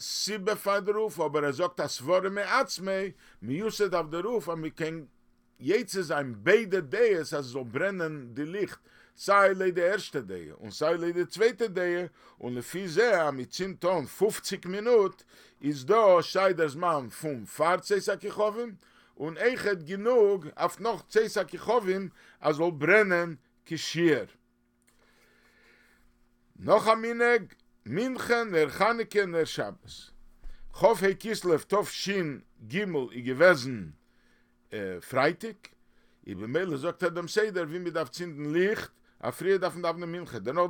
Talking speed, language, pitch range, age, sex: 140 wpm, English, 145-205 Hz, 50-69, male